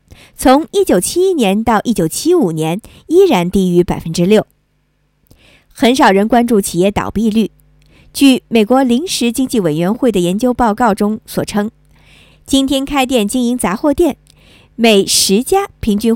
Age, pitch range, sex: 50-69, 175-270 Hz, male